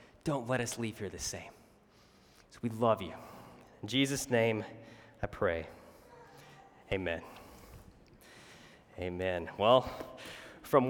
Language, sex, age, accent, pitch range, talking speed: English, male, 20-39, American, 110-145 Hz, 110 wpm